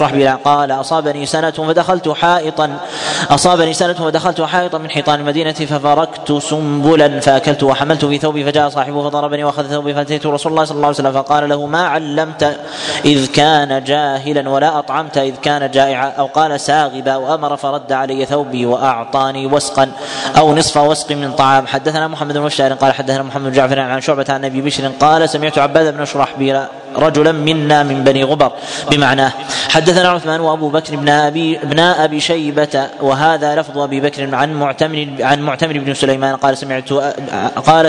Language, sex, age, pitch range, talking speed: Arabic, male, 20-39, 135-155 Hz, 160 wpm